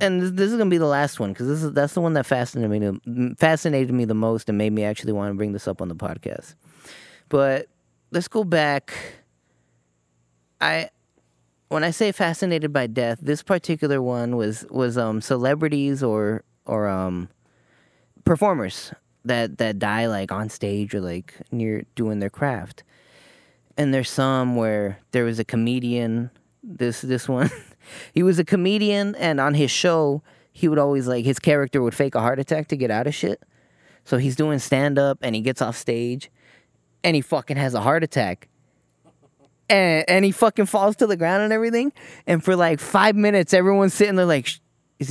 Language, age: English, 30-49